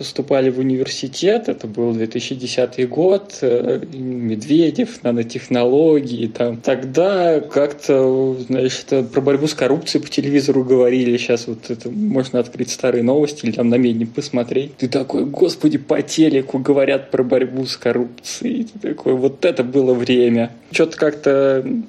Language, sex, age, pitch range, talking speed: Russian, male, 20-39, 125-140 Hz, 135 wpm